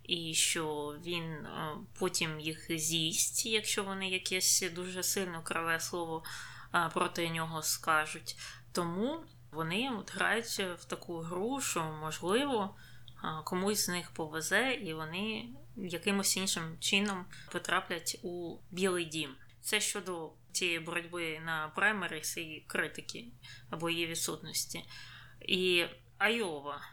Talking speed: 115 wpm